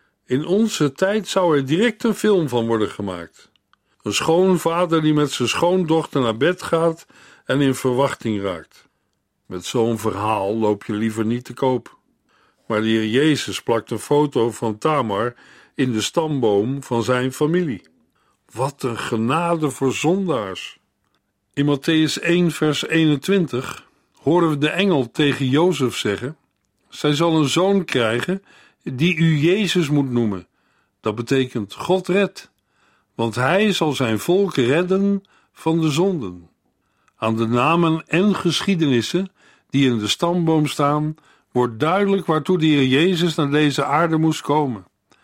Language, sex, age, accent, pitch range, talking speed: Dutch, male, 50-69, Dutch, 120-170 Hz, 140 wpm